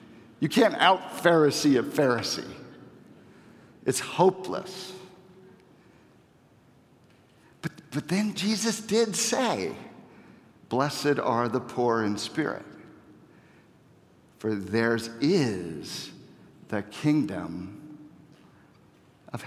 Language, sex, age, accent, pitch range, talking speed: English, male, 50-69, American, 185-250 Hz, 75 wpm